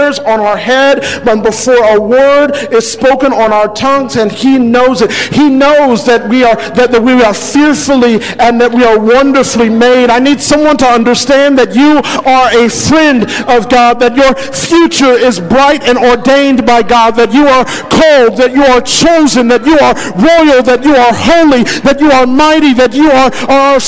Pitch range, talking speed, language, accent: 255-305 Hz, 190 wpm, English, American